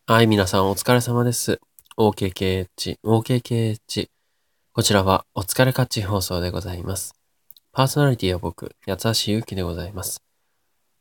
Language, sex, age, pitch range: Japanese, male, 20-39, 90-120 Hz